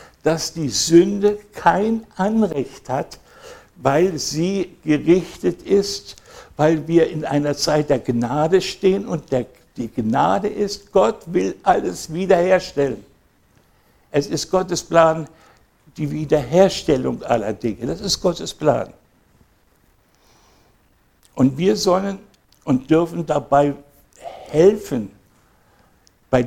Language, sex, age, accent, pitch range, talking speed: German, male, 60-79, German, 140-175 Hz, 105 wpm